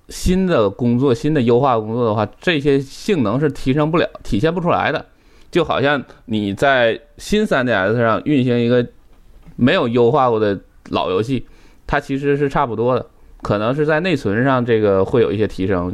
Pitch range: 105-150 Hz